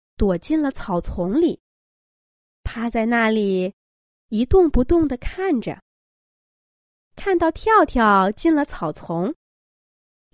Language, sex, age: Chinese, female, 20-39